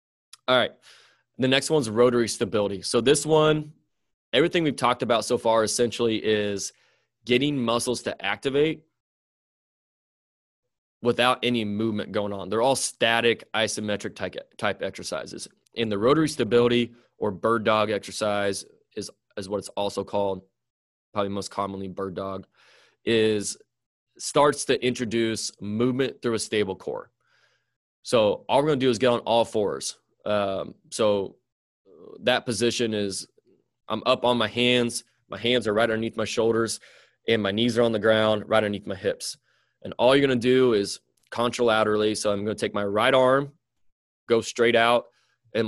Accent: American